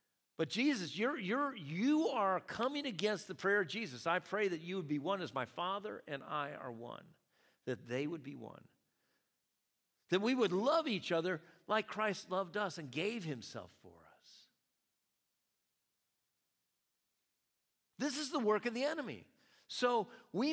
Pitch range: 145-210 Hz